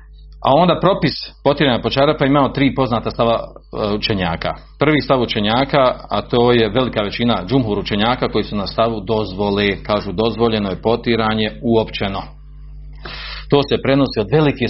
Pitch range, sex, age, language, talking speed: 115-140 Hz, male, 40-59, Croatian, 145 wpm